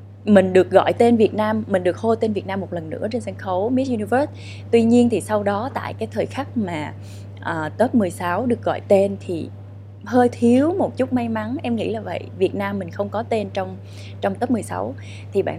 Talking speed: 225 wpm